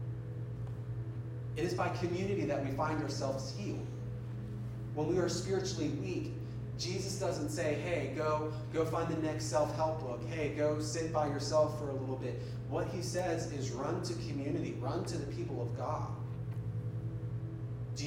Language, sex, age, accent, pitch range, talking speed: English, male, 30-49, American, 120-145 Hz, 160 wpm